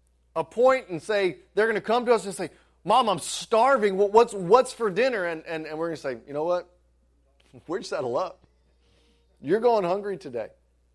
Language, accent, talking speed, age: English, American, 195 wpm, 30-49